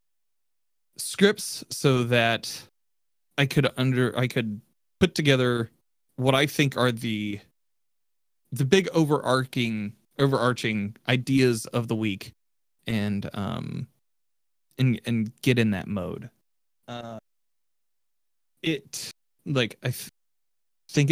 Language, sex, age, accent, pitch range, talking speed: English, male, 20-39, American, 100-135 Hz, 105 wpm